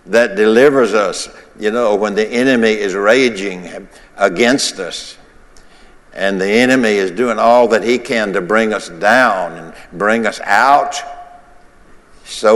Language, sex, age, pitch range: English, male, 60-79, 105-130 Hz